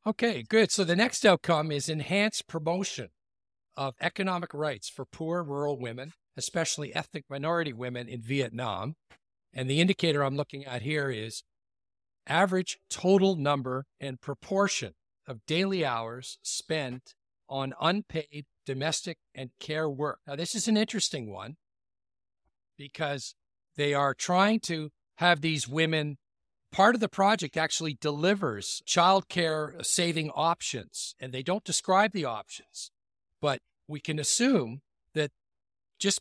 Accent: American